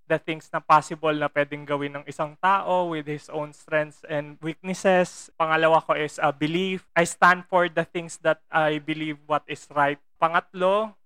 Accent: native